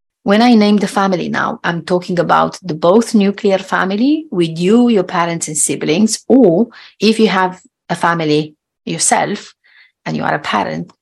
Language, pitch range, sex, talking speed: English, 155-195 Hz, female, 170 wpm